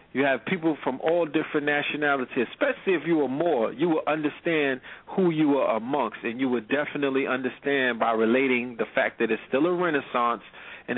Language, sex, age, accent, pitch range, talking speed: English, male, 40-59, American, 130-160 Hz, 185 wpm